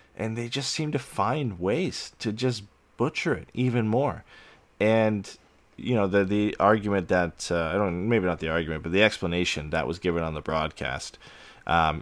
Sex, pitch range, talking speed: male, 80-95 Hz, 185 wpm